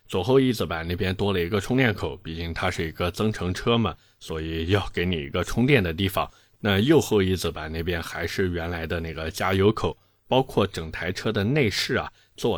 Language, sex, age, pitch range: Chinese, male, 20-39, 90-125 Hz